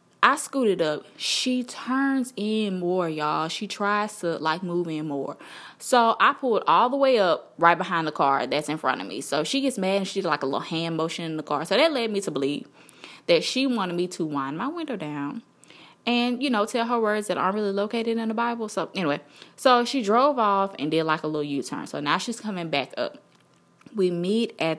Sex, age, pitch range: female, 20-39, 155-230 Hz